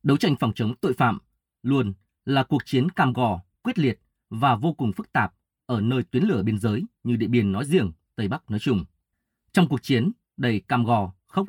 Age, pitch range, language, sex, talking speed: 20-39, 105-135 Hz, Vietnamese, male, 215 wpm